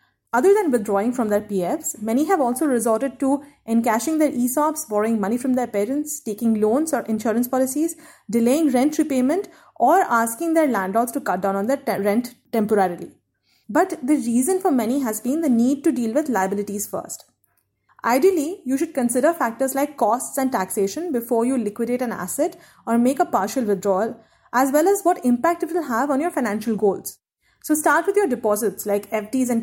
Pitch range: 225-305 Hz